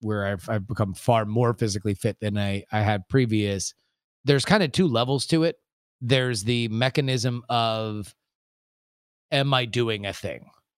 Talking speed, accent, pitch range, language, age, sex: 160 wpm, American, 115-140 Hz, English, 30-49, male